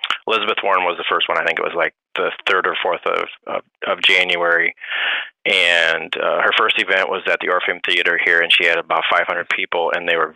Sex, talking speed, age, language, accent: male, 225 wpm, 30-49, English, American